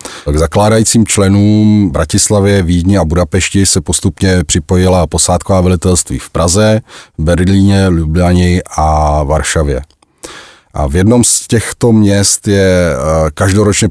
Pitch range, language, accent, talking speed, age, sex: 80-110 Hz, Czech, native, 110 wpm, 30-49, male